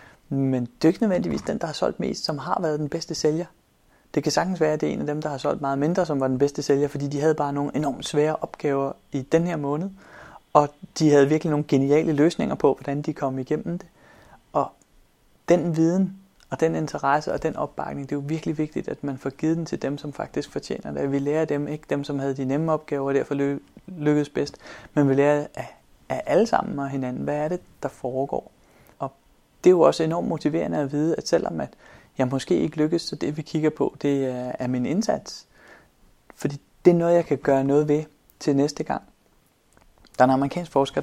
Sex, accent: male, native